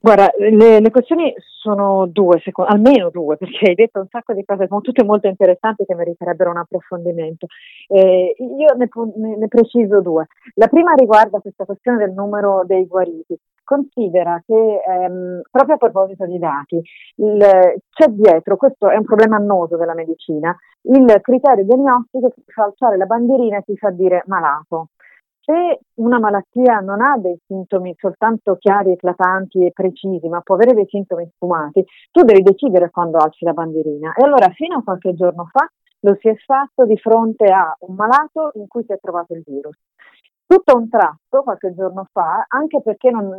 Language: Italian